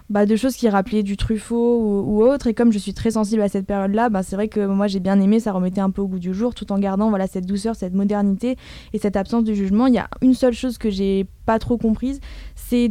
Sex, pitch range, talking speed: female, 200-235 Hz, 280 wpm